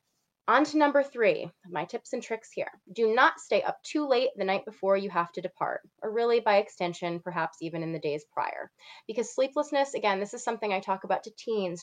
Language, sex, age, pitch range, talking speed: English, female, 20-39, 180-240 Hz, 220 wpm